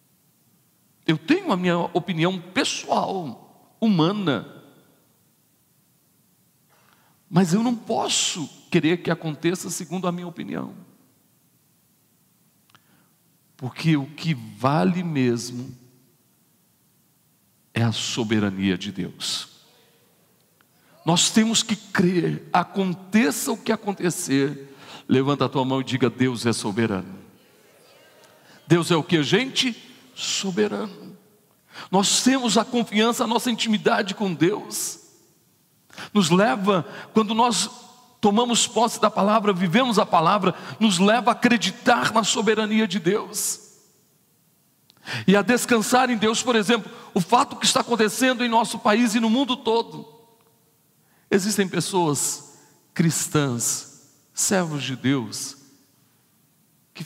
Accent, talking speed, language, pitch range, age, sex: Brazilian, 110 wpm, Portuguese, 145-225 Hz, 60-79, male